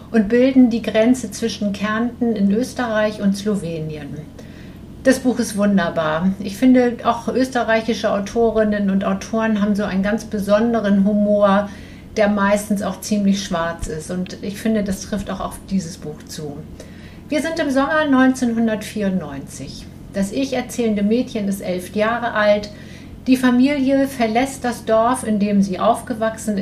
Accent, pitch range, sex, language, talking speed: German, 205-245 Hz, female, German, 145 wpm